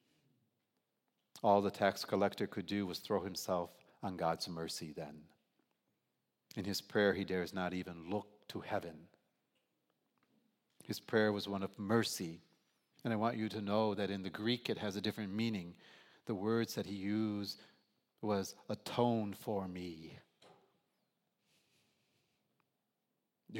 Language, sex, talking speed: English, male, 135 wpm